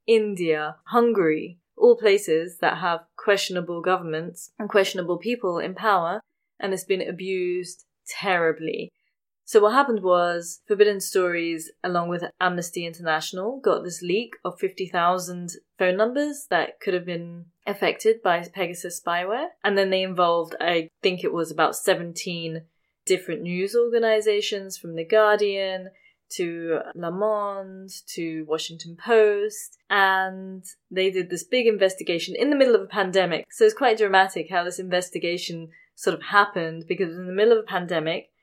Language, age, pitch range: English, 20-39, 170-205 Hz